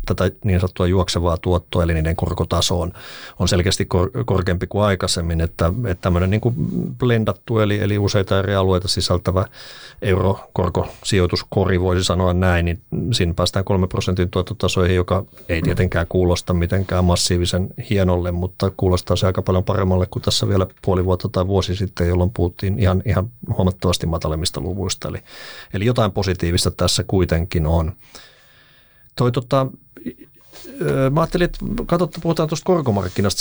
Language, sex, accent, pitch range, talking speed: Finnish, male, native, 90-100 Hz, 140 wpm